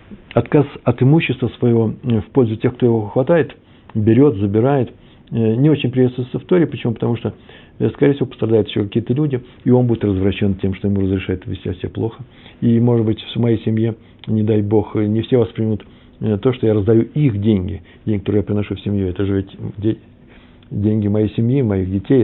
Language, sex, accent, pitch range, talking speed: Russian, male, native, 110-140 Hz, 190 wpm